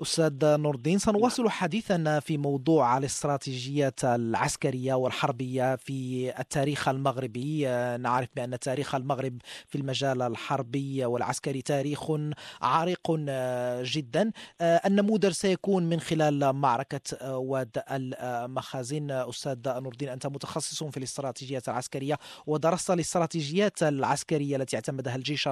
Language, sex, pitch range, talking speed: Arabic, male, 135-170 Hz, 105 wpm